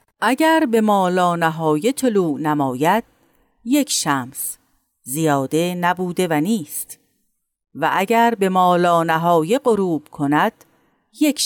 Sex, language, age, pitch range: female, Persian, 50-69, 160-235 Hz